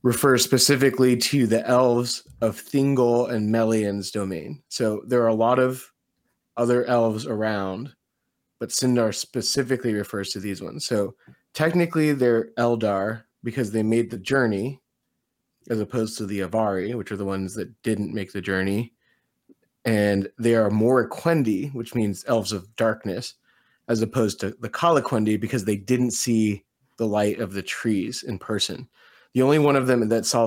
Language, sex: English, male